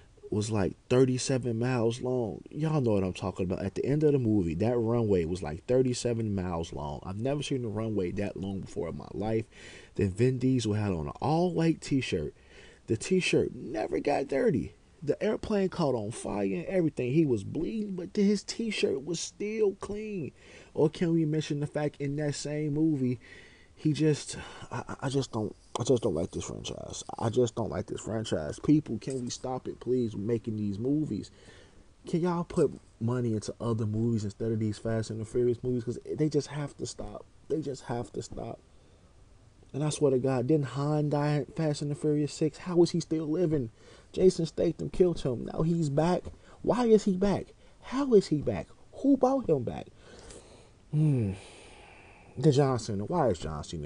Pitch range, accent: 105-155 Hz, American